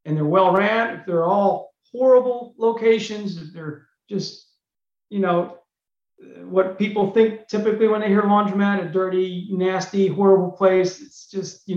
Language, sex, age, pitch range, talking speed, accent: English, male, 40-59, 175-220 Hz, 155 wpm, American